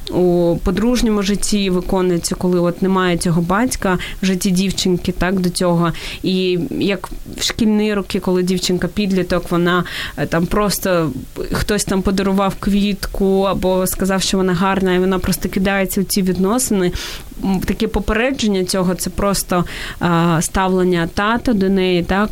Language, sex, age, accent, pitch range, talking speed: Ukrainian, female, 20-39, native, 180-205 Hz, 140 wpm